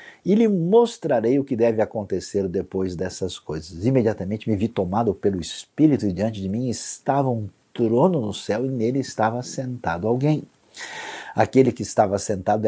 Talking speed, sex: 160 wpm, male